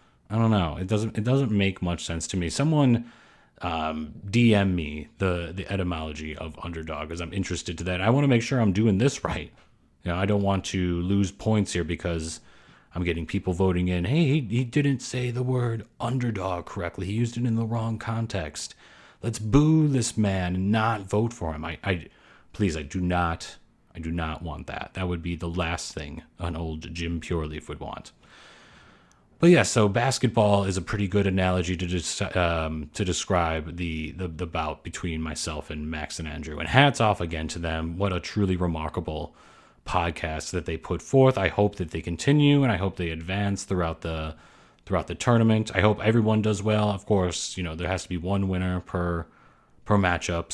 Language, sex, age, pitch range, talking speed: English, male, 30-49, 85-110 Hz, 200 wpm